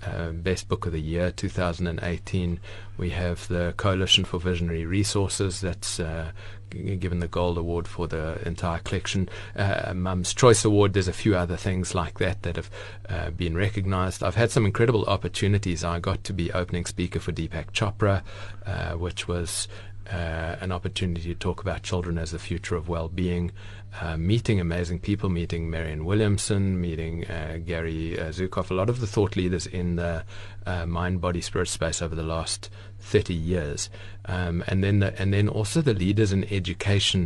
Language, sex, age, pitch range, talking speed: English, male, 30-49, 85-100 Hz, 175 wpm